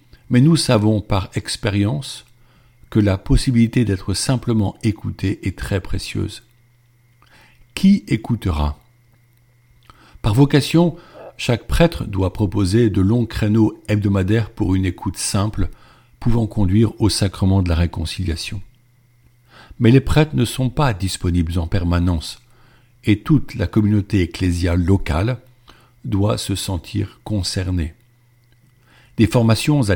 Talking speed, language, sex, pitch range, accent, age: 120 wpm, French, male, 95-120 Hz, French, 50-69